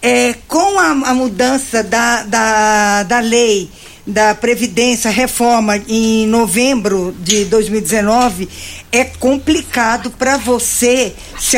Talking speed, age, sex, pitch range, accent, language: 110 wpm, 50-69, female, 225-275 Hz, Brazilian, Portuguese